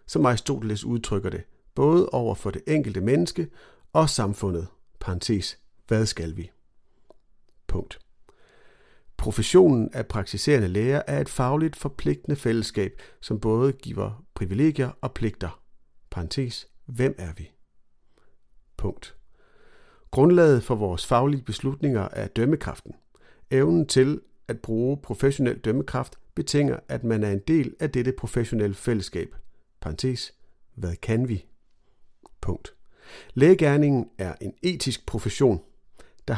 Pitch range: 105-140 Hz